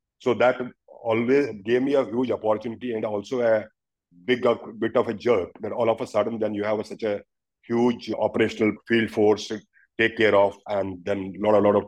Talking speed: 200 wpm